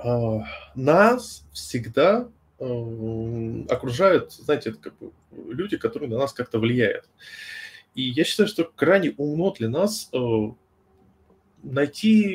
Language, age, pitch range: Russian, 20-39, 110-155 Hz